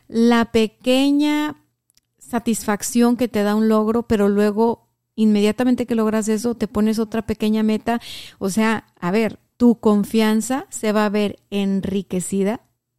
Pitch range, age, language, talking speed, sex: 190-240 Hz, 30-49, Spanish, 140 wpm, female